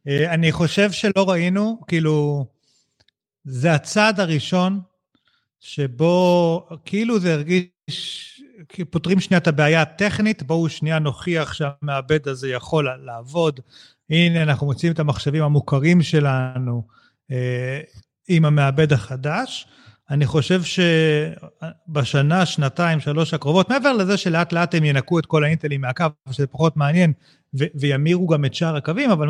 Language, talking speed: Hebrew, 125 wpm